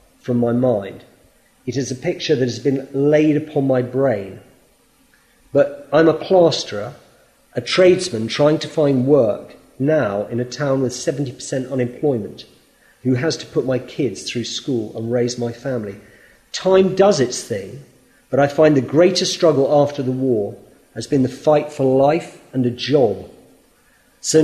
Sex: male